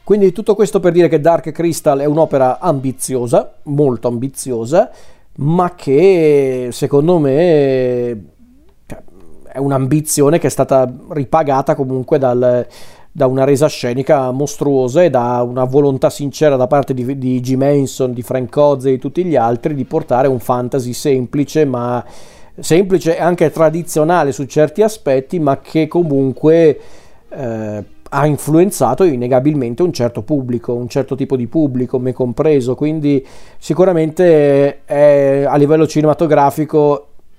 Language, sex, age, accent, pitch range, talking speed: Italian, male, 40-59, native, 130-155 Hz, 135 wpm